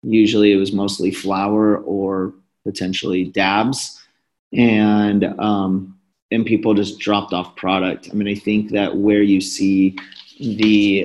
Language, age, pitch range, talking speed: English, 30-49, 95-110 Hz, 135 wpm